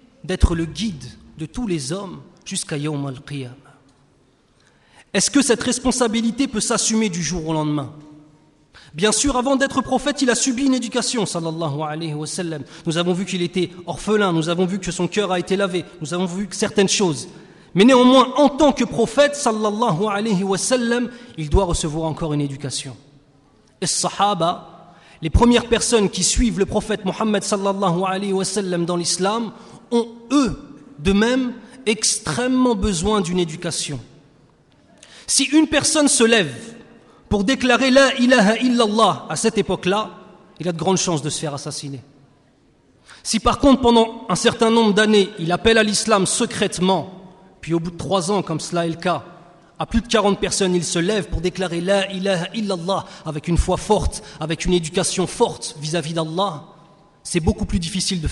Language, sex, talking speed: French, male, 175 wpm